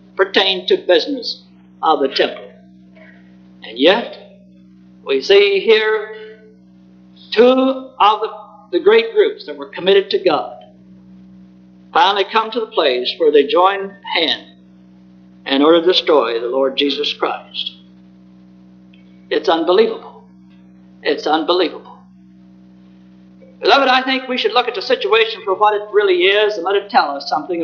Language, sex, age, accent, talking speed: English, male, 60-79, American, 135 wpm